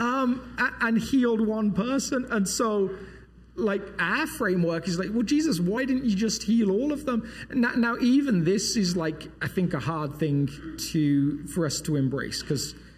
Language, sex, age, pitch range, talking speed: English, male, 40-59, 145-195 Hz, 175 wpm